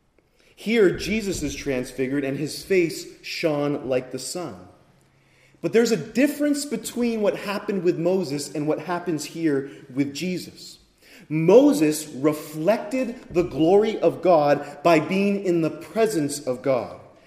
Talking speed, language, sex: 135 wpm, English, male